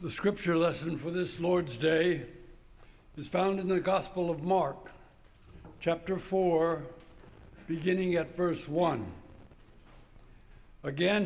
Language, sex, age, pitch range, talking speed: English, male, 60-79, 155-185 Hz, 110 wpm